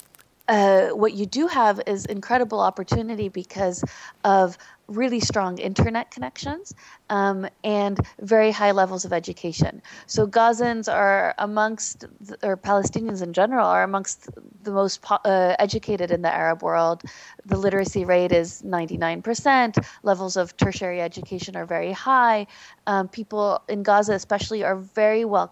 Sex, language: female, English